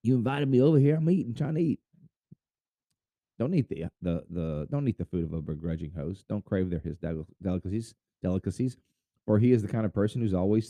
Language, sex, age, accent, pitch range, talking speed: English, male, 30-49, American, 90-135 Hz, 215 wpm